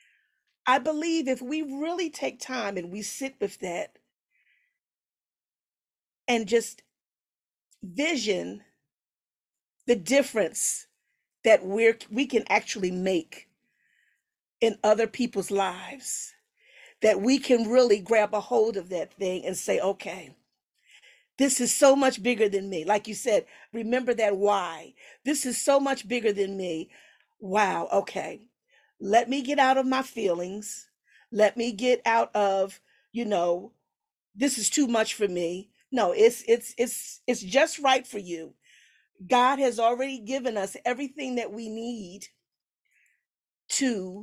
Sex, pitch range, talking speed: female, 205-270 Hz, 135 wpm